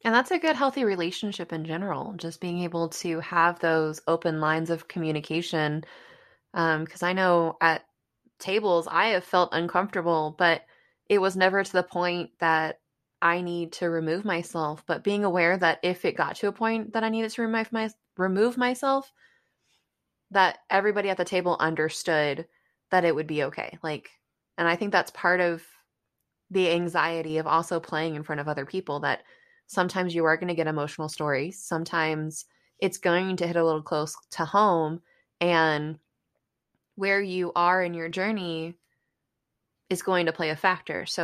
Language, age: English, 20-39